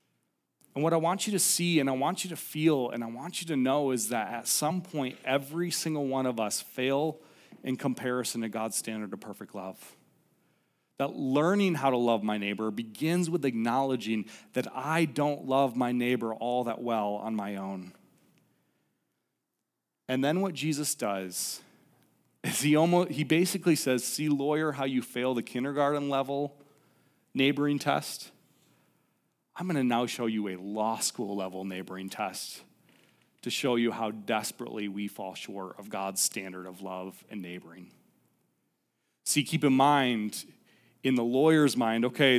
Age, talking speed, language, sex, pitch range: 30-49, 165 wpm, English, male, 120-175 Hz